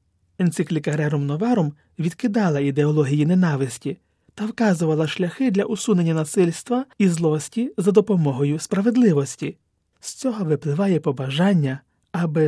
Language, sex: Ukrainian, male